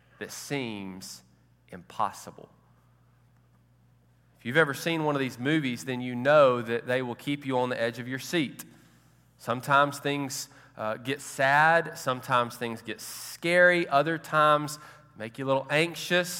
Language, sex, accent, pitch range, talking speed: English, male, American, 115-165 Hz, 150 wpm